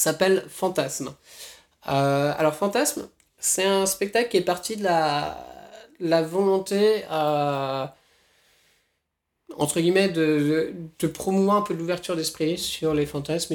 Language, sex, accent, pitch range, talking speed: French, male, French, 140-175 Hz, 125 wpm